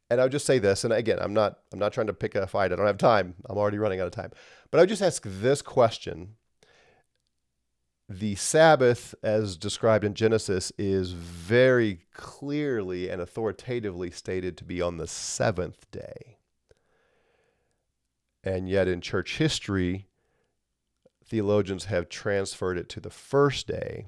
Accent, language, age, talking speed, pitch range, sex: American, English, 40-59, 160 wpm, 90-115 Hz, male